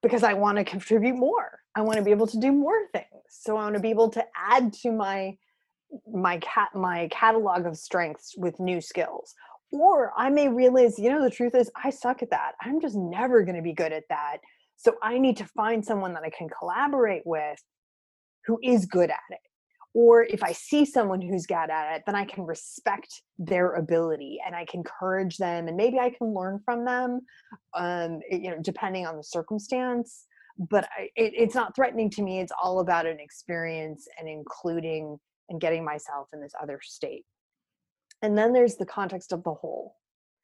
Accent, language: American, English